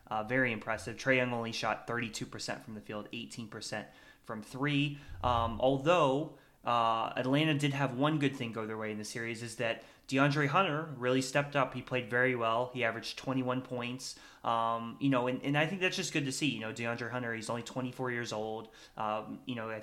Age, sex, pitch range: 20-39, male, 115-135 Hz